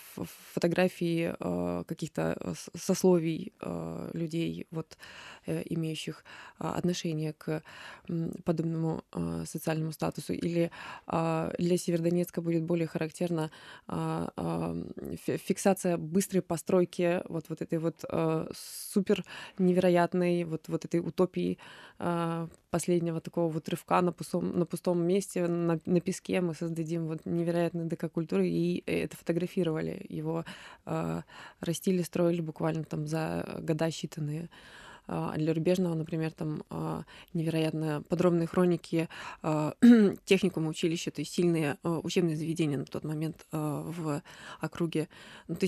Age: 20-39